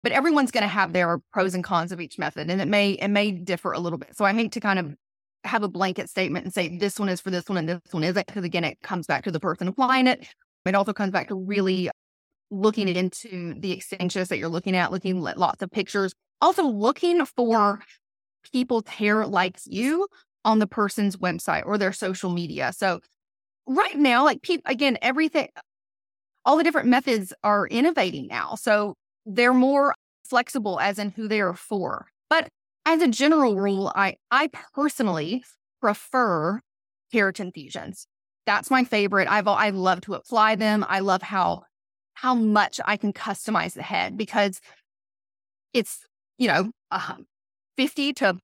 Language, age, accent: English, 20-39, American